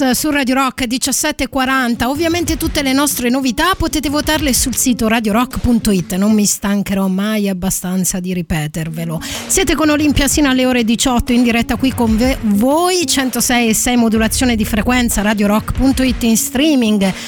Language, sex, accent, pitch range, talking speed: Italian, female, native, 215-265 Hz, 150 wpm